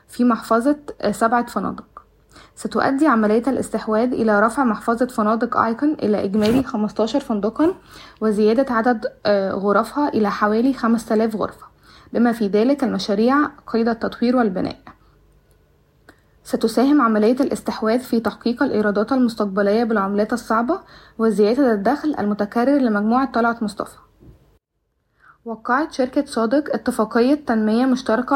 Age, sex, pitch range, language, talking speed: 20-39, female, 215-260 Hz, Arabic, 110 wpm